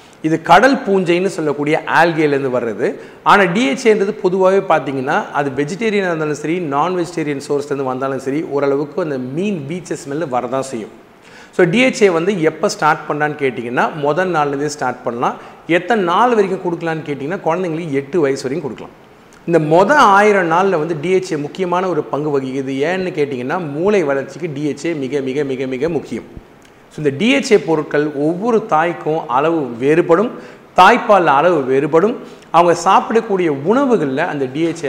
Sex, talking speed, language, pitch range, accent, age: male, 140 wpm, Tamil, 140-190 Hz, native, 40-59